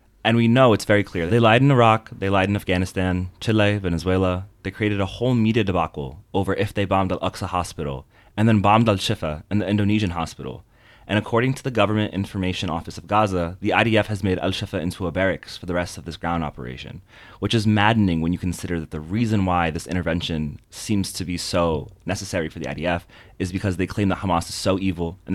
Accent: American